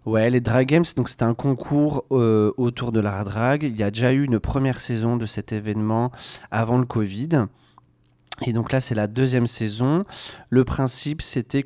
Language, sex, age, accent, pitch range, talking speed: French, male, 30-49, French, 100-125 Hz, 190 wpm